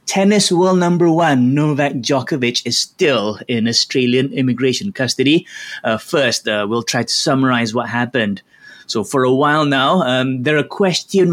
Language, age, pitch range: English, 20-39, 125-160 Hz